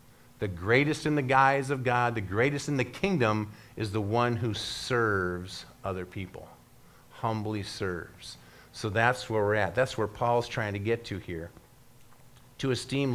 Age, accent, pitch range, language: 50-69, American, 110-135 Hz, English